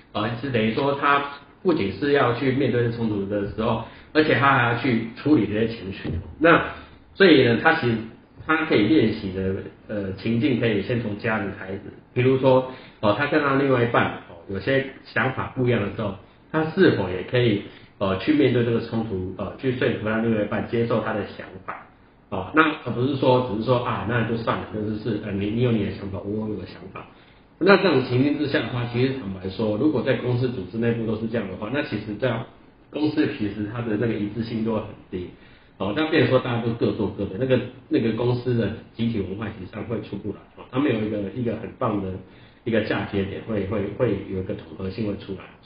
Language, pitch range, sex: Chinese, 100-130 Hz, male